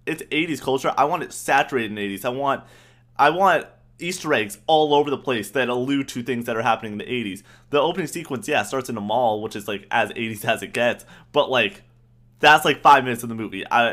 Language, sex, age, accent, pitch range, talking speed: English, male, 20-39, American, 105-130 Hz, 235 wpm